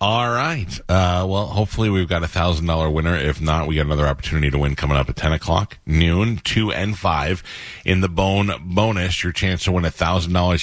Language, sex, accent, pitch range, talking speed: English, male, American, 80-100 Hz, 200 wpm